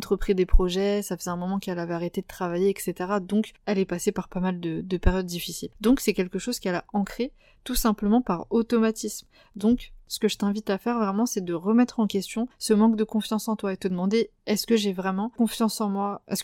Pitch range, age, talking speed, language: 190-225 Hz, 20-39, 235 wpm, French